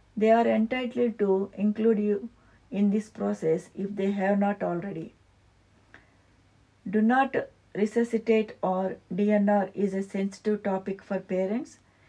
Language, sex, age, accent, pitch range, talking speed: English, female, 60-79, Indian, 185-215 Hz, 125 wpm